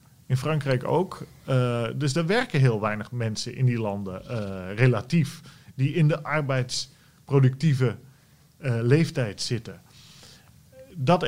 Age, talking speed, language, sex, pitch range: 40-59, 120 wpm, Dutch, male, 120-155 Hz